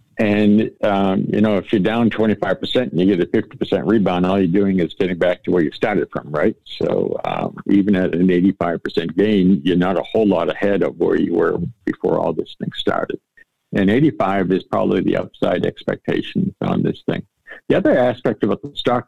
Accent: American